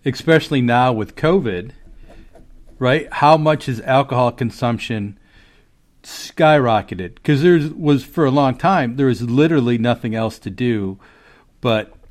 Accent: American